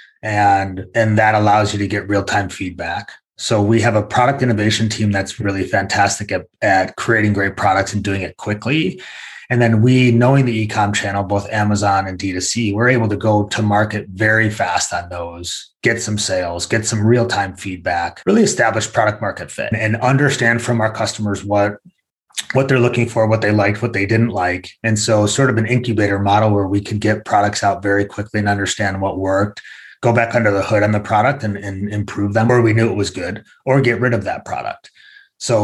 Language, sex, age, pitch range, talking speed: English, male, 30-49, 100-115 Hz, 205 wpm